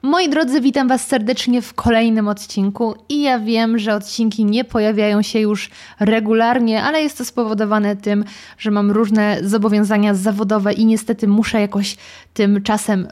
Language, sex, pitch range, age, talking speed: Polish, female, 205-245 Hz, 20-39, 155 wpm